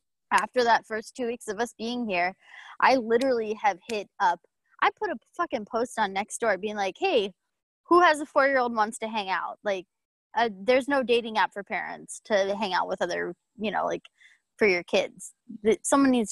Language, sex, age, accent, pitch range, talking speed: English, female, 20-39, American, 205-270 Hz, 195 wpm